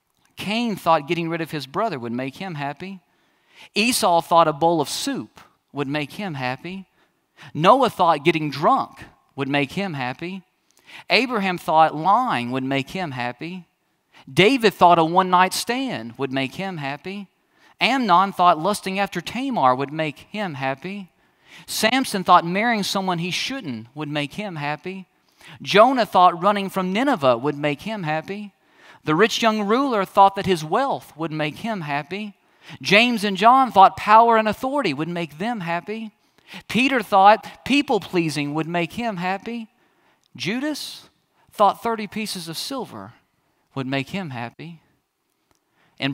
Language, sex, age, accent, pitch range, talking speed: English, male, 40-59, American, 150-215 Hz, 150 wpm